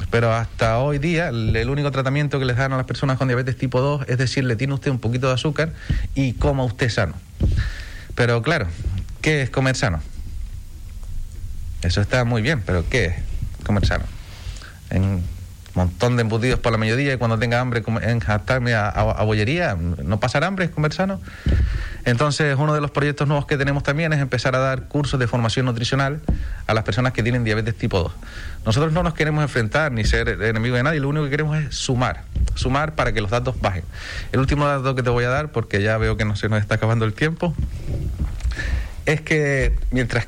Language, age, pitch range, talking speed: Spanish, 30-49, 100-135 Hz, 200 wpm